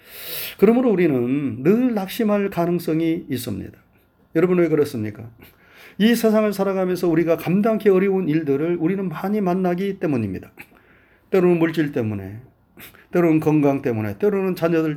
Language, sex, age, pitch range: Korean, male, 40-59, 130-180 Hz